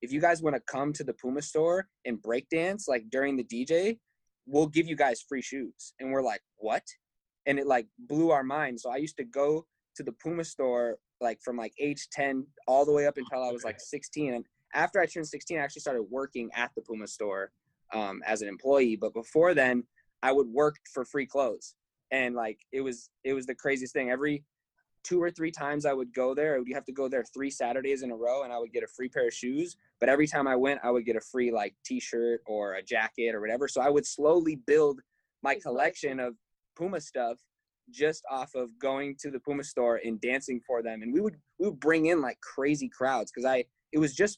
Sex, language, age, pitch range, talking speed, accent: male, English, 20-39, 120-150 Hz, 235 wpm, American